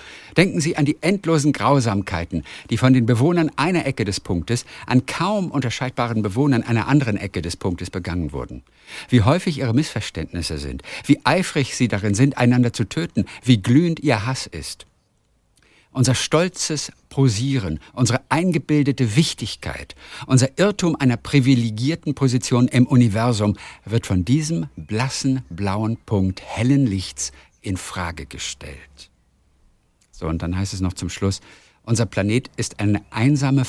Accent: German